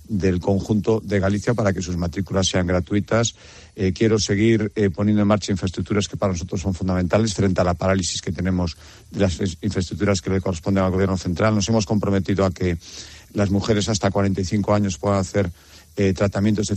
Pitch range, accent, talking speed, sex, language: 95-110 Hz, Spanish, 190 wpm, male, Spanish